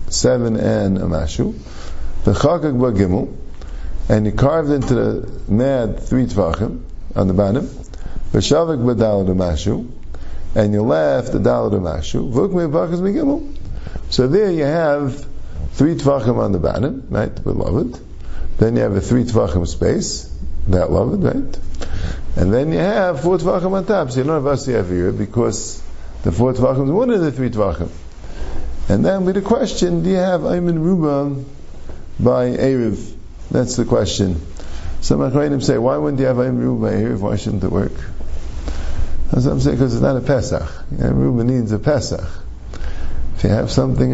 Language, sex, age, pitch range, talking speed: English, male, 50-69, 80-130 Hz, 170 wpm